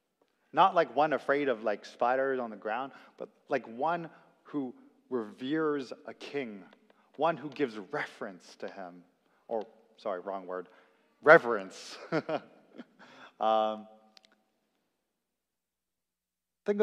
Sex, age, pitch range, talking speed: male, 30-49, 115-170 Hz, 105 wpm